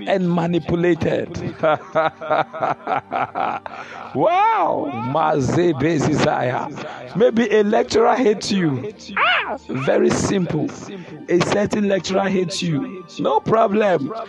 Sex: male